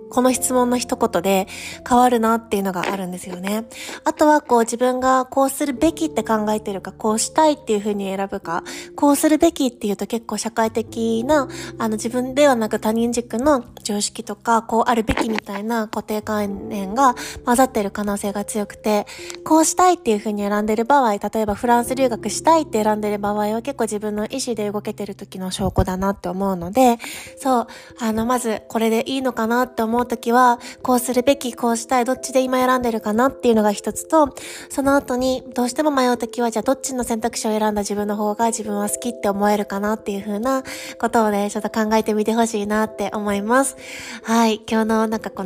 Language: Japanese